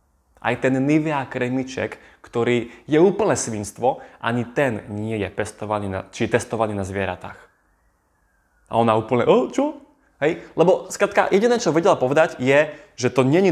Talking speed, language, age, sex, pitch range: 150 wpm, Slovak, 20-39, male, 110-150 Hz